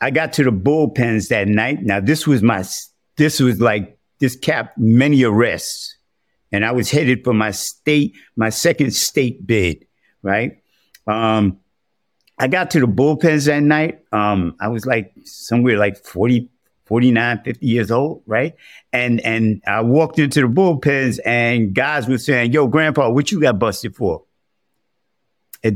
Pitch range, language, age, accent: 115-155 Hz, English, 50-69, American